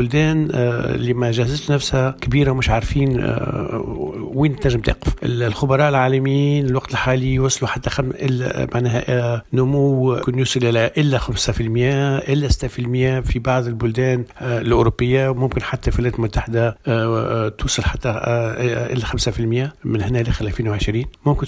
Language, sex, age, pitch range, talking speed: Arabic, male, 50-69, 115-130 Hz, 130 wpm